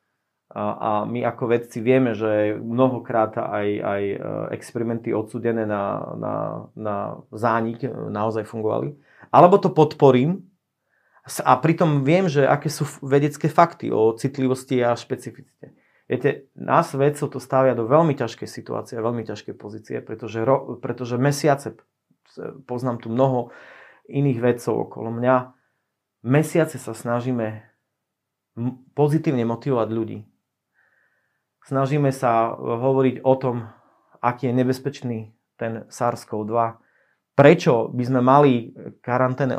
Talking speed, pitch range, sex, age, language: 115 wpm, 115-140 Hz, male, 30-49, Slovak